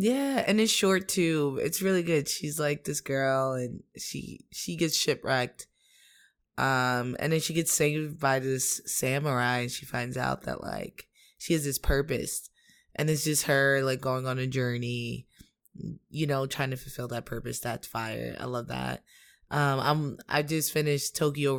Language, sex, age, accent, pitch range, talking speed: English, female, 20-39, American, 125-155 Hz, 175 wpm